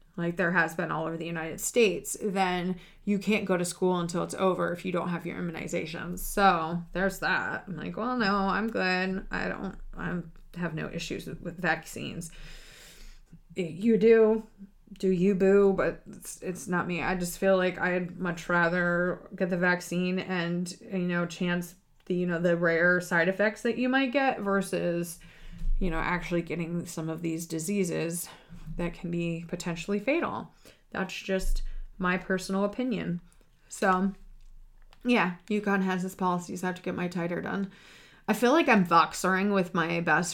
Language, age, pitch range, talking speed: English, 20-39, 175-205 Hz, 175 wpm